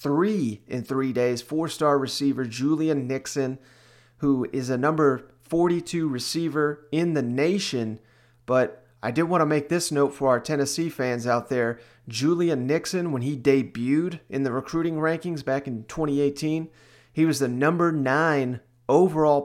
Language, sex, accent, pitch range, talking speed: English, male, American, 130-155 Hz, 150 wpm